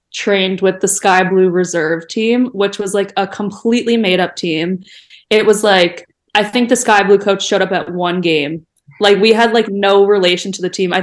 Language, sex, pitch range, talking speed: English, female, 185-210 Hz, 205 wpm